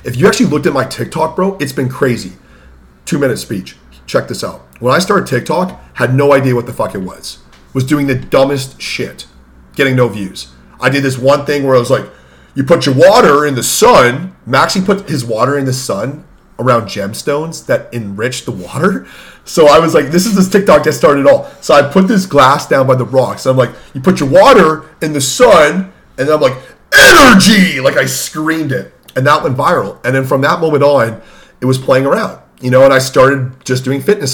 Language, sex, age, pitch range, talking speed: English, male, 40-59, 125-160 Hz, 220 wpm